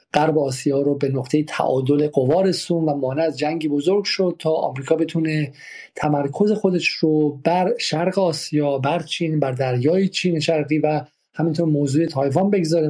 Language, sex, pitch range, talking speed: Persian, male, 145-170 Hz, 160 wpm